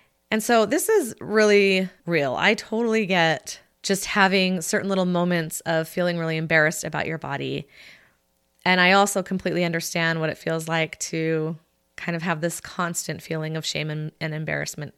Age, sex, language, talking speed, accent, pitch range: 20-39, female, English, 170 wpm, American, 165-210 Hz